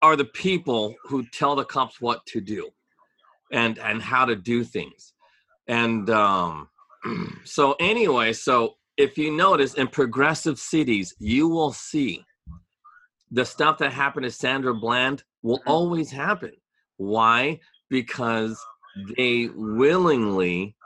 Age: 40-59